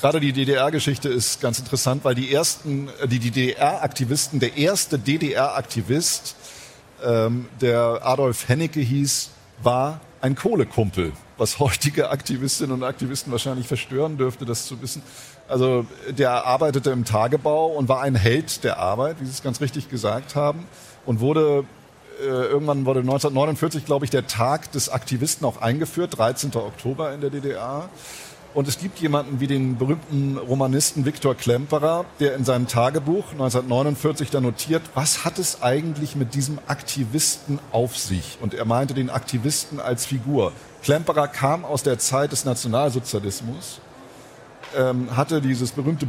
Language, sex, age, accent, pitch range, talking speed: German, male, 50-69, German, 125-150 Hz, 145 wpm